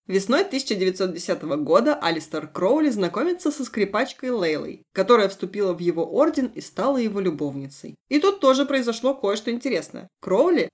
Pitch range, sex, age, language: 165-230 Hz, female, 20-39, Russian